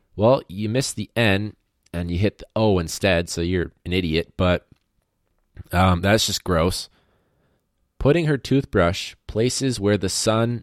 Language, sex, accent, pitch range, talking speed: English, male, American, 80-100 Hz, 150 wpm